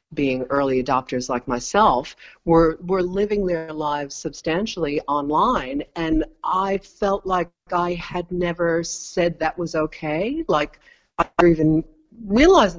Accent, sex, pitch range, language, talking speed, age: American, female, 155-210 Hz, English, 130 wpm, 50-69